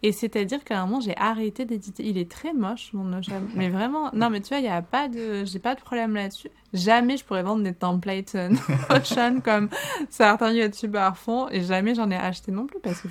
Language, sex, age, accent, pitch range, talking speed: French, female, 20-39, French, 195-240 Hz, 235 wpm